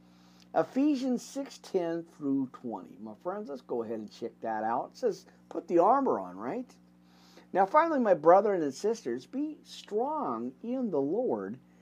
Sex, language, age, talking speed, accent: male, English, 50-69, 160 wpm, American